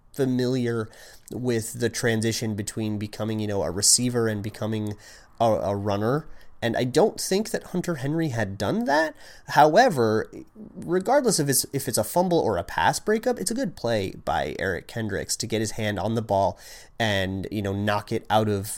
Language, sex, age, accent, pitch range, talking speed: English, male, 30-49, American, 105-135 Hz, 185 wpm